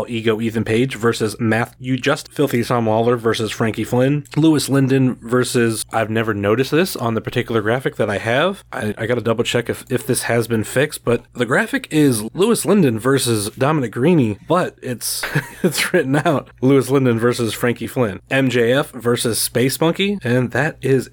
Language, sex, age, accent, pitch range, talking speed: English, male, 20-39, American, 110-135 Hz, 180 wpm